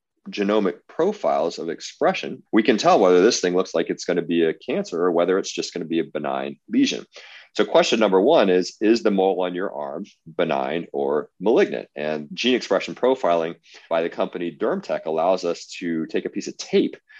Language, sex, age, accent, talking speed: English, male, 30-49, American, 200 wpm